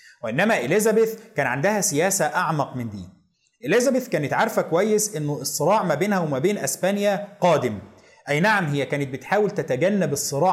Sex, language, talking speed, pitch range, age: male, Arabic, 155 wpm, 140-205 Hz, 30-49